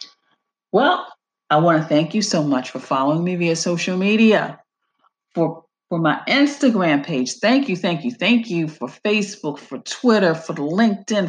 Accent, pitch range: American, 160-225 Hz